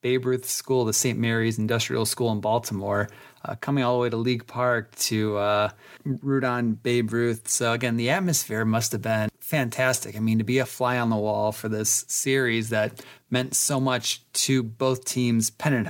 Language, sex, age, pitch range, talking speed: English, male, 30-49, 110-125 Hz, 195 wpm